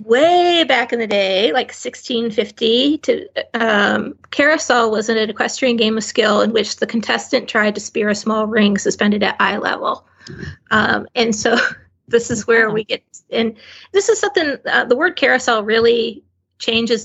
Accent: American